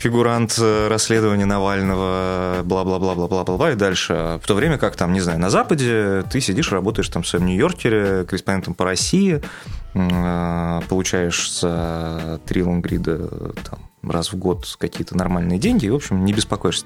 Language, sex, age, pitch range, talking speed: Russian, male, 20-39, 90-115 Hz, 165 wpm